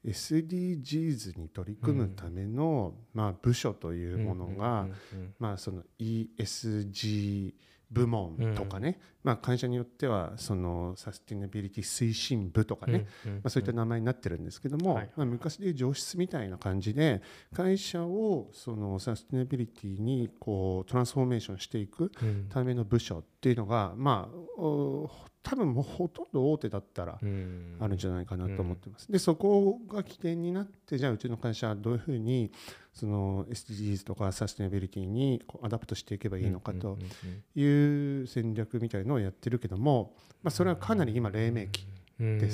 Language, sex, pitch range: Japanese, male, 100-140 Hz